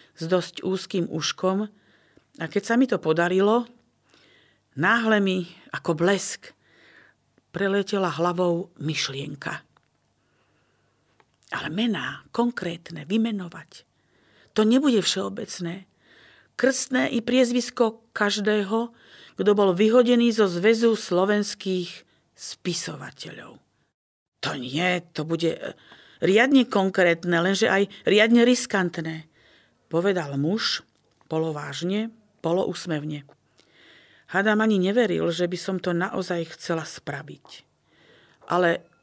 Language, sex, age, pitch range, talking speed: Slovak, female, 50-69, 165-210 Hz, 90 wpm